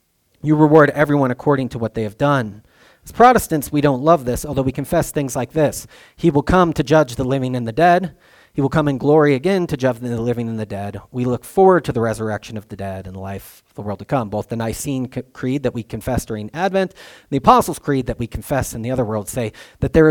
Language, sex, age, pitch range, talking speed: English, male, 40-59, 110-150 Hz, 250 wpm